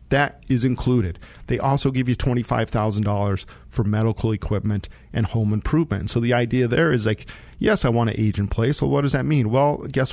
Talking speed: 200 wpm